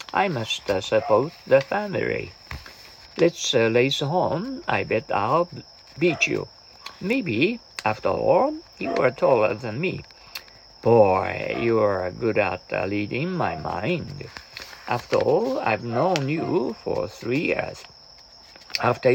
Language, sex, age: Japanese, male, 50-69